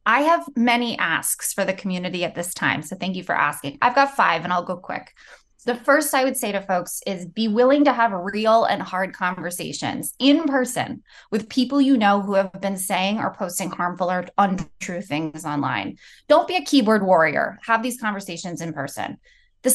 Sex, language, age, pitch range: female, English, 20-39, 180-235 Hz